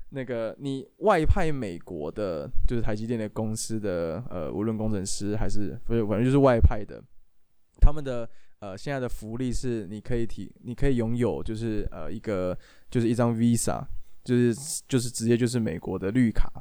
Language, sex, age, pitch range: Chinese, male, 20-39, 105-125 Hz